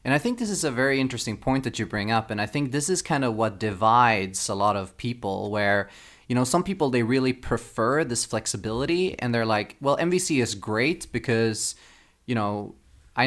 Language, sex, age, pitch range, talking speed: English, male, 20-39, 110-130 Hz, 215 wpm